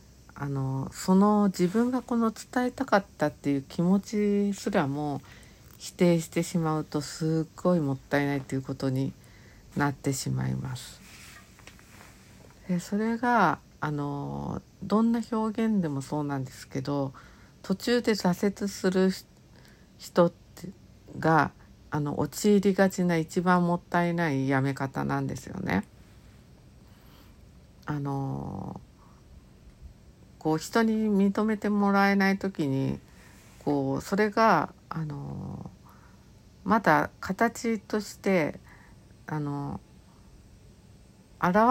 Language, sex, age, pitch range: Japanese, female, 60-79, 135-200 Hz